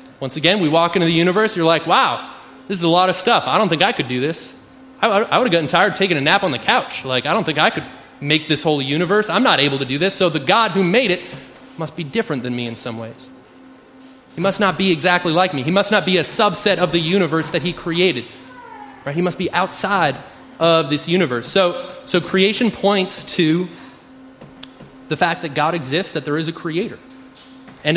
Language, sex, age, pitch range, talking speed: English, male, 20-39, 155-195 Hz, 230 wpm